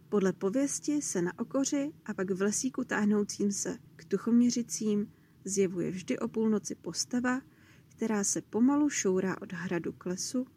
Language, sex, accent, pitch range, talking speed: Czech, female, native, 175-220 Hz, 150 wpm